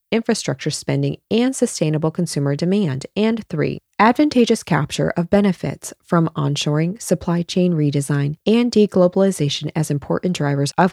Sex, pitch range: female, 150-195 Hz